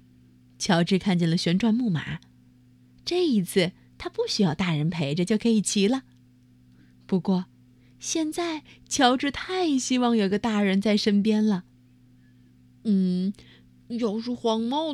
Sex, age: female, 30-49